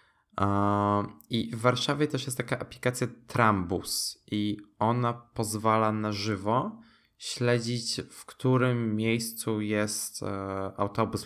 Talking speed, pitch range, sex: 100 wpm, 95-115 Hz, male